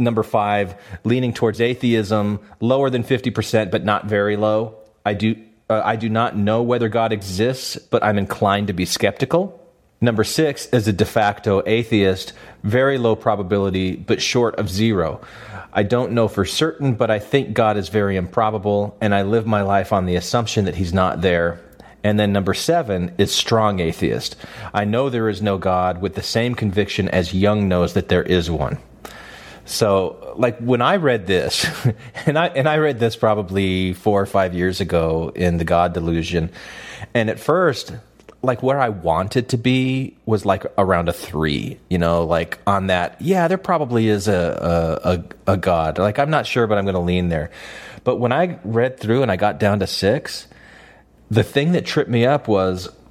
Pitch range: 95-120 Hz